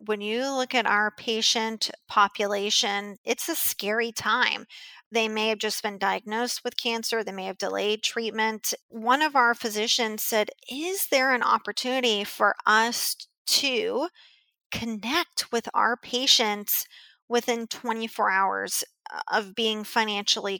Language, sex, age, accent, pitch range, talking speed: English, female, 30-49, American, 210-245 Hz, 135 wpm